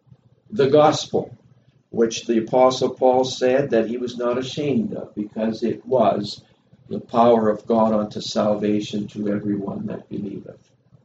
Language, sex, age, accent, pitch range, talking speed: English, male, 60-79, American, 110-130 Hz, 140 wpm